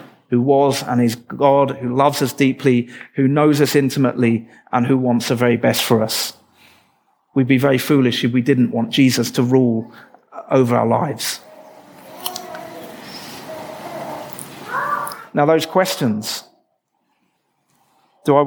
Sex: male